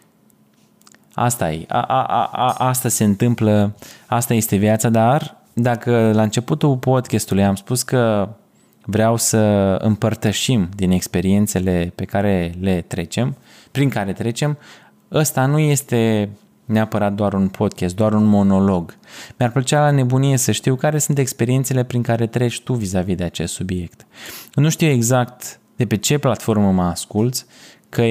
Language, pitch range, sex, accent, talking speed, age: Romanian, 105-130 Hz, male, native, 140 wpm, 20-39